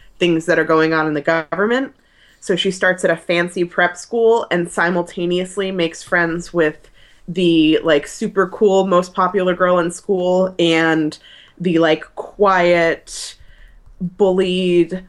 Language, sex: English, female